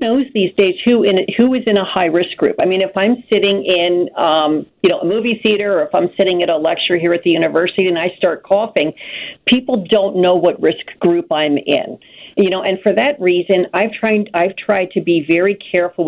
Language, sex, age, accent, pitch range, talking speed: English, female, 50-69, American, 175-215 Hz, 230 wpm